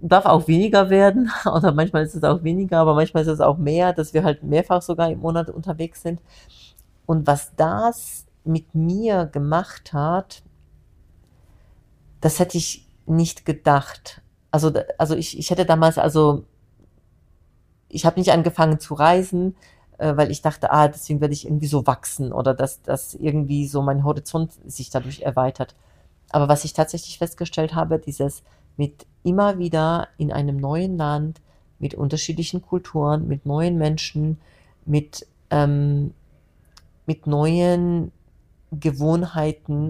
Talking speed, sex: 145 wpm, female